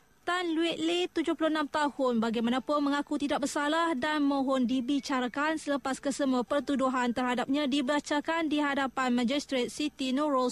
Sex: female